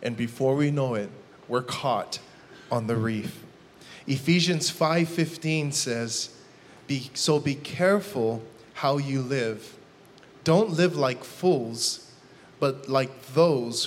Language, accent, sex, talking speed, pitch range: English, American, male, 115 wpm, 140-205 Hz